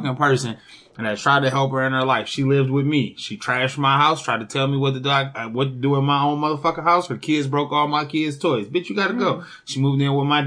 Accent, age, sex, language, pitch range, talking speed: American, 20-39, male, English, 140-205 Hz, 280 wpm